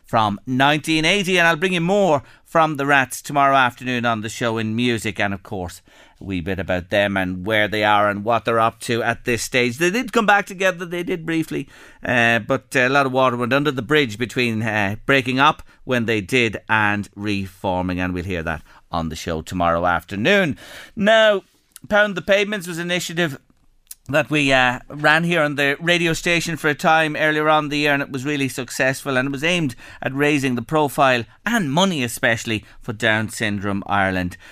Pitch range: 115-155 Hz